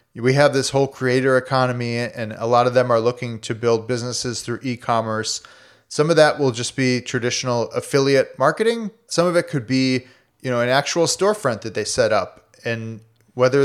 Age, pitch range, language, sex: 30-49, 120-150 Hz, English, male